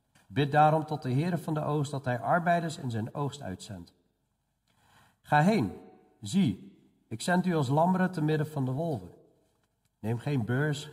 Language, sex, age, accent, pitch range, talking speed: Dutch, male, 50-69, Dutch, 115-160 Hz, 170 wpm